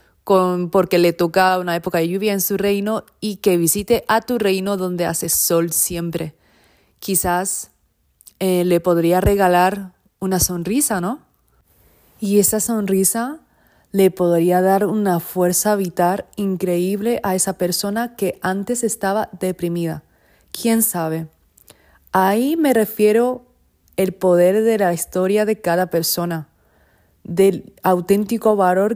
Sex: female